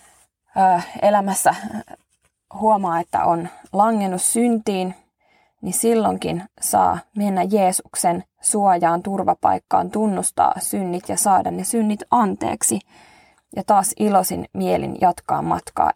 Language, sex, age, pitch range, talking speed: Finnish, female, 20-39, 180-215 Hz, 100 wpm